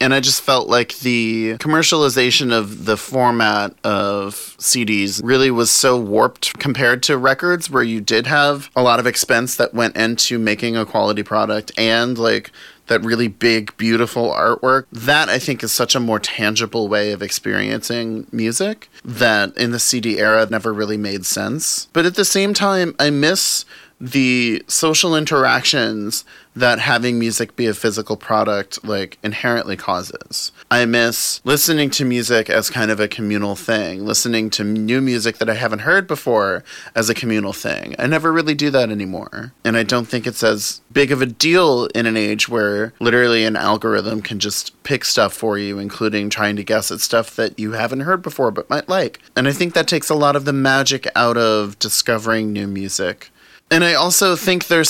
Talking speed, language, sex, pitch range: 185 wpm, English, male, 110-135 Hz